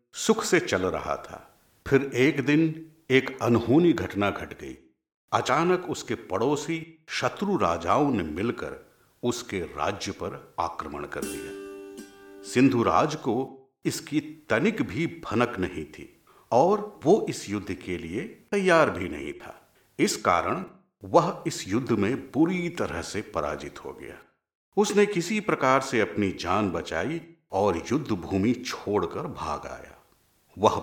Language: Hindi